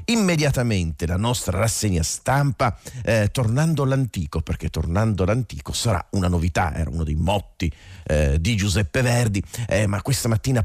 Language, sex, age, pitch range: Italian, male, 40-59, 85-110 Hz